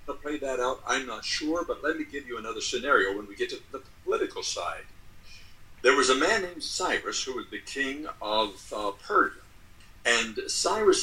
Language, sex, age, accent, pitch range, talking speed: English, male, 60-79, American, 340-430 Hz, 195 wpm